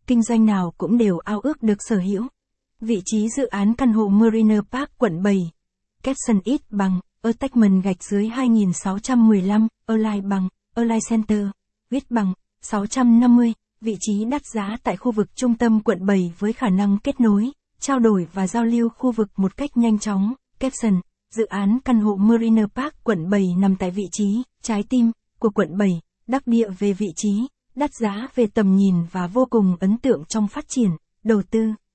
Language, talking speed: Vietnamese, 185 wpm